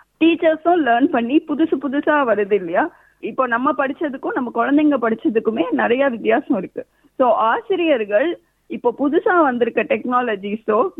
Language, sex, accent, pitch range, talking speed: Tamil, female, native, 220-300 Hz, 120 wpm